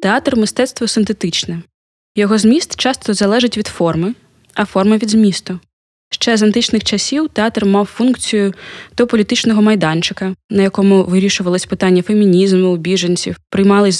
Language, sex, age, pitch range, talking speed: Ukrainian, female, 20-39, 185-220 Hz, 135 wpm